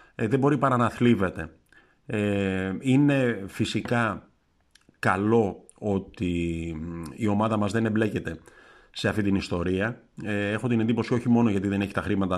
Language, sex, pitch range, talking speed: Greek, male, 95-120 Hz, 145 wpm